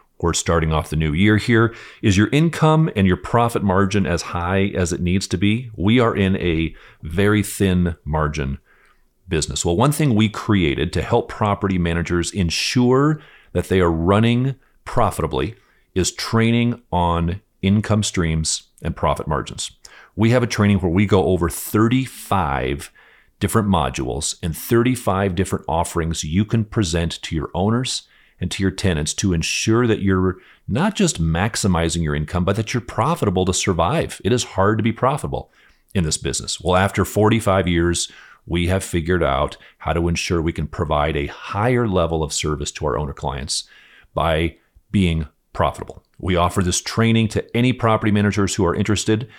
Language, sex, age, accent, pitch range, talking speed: English, male, 40-59, American, 85-110 Hz, 170 wpm